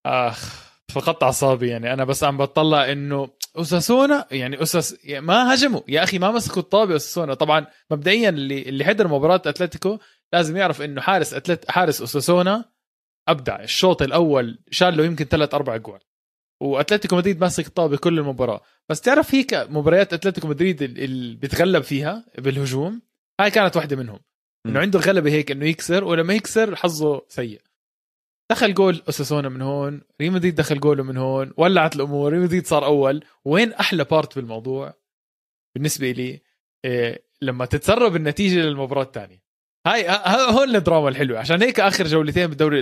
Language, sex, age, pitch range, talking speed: Arabic, male, 20-39, 135-180 Hz, 155 wpm